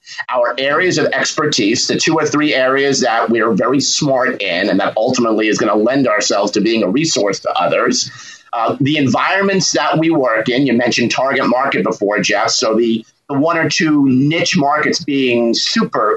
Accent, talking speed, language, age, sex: American, 195 wpm, English, 40-59, male